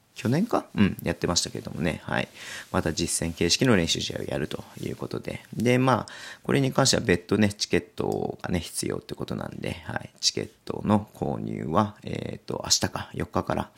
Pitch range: 85-115 Hz